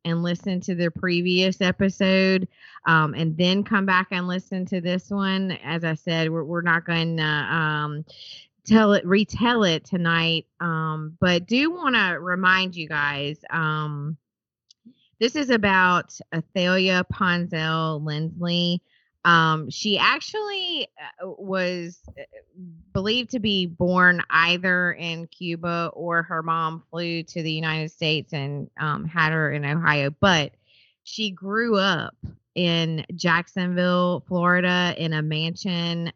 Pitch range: 160-185 Hz